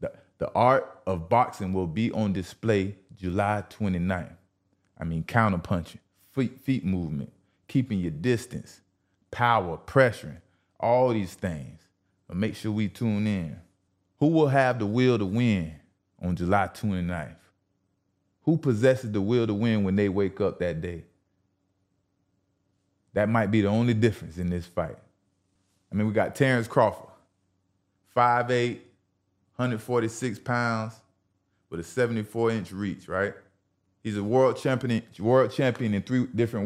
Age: 30-49